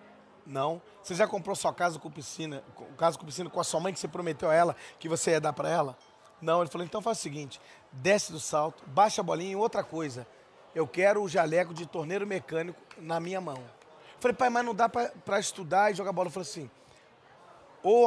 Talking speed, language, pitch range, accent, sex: 225 wpm, Portuguese, 150-180 Hz, Brazilian, male